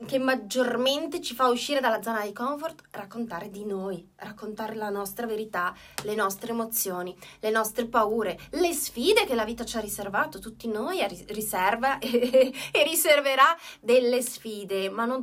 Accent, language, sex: native, Italian, female